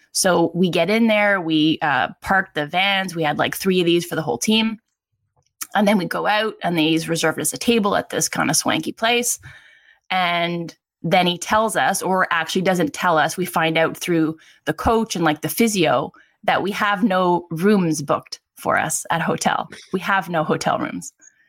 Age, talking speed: 20-39, 205 wpm